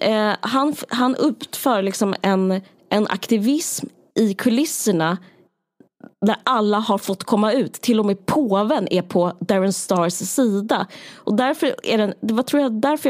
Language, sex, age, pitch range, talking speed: Swedish, female, 20-39, 195-245 Hz, 150 wpm